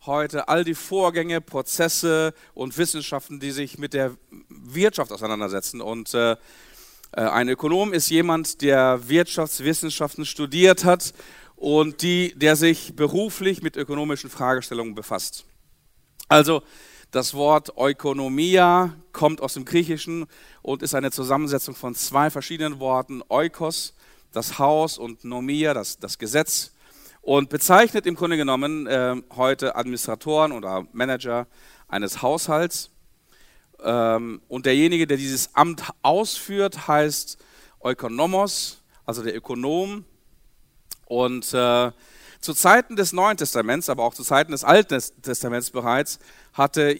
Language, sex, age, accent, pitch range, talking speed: German, male, 50-69, German, 125-165 Hz, 125 wpm